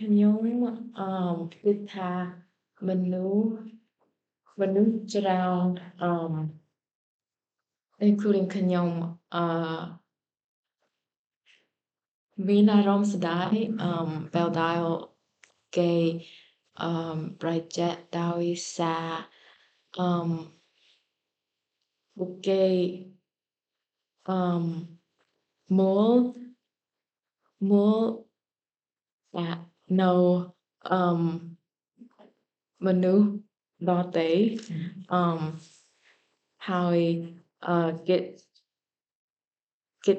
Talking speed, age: 35 wpm, 20-39